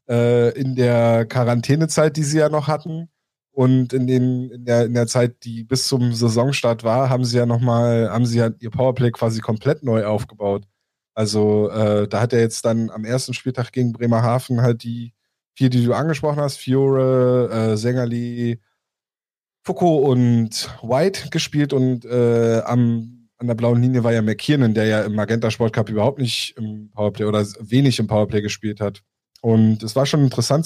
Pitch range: 110-130 Hz